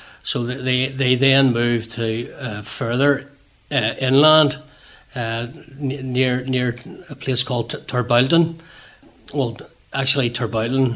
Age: 60-79